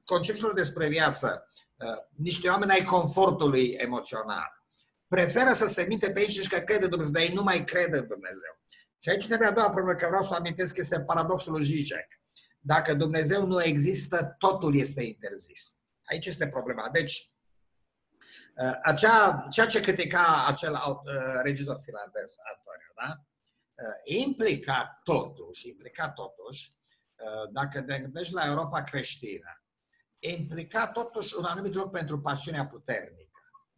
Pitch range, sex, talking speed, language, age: 145-195 Hz, male, 145 wpm, Romanian, 50-69